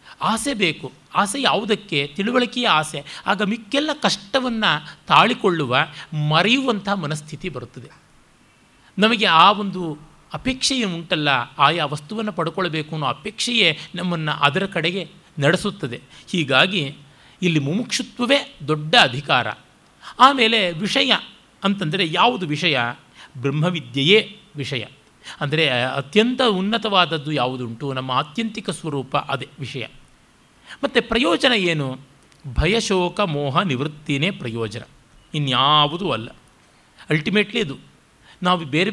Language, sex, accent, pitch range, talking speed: Kannada, male, native, 145-210 Hz, 95 wpm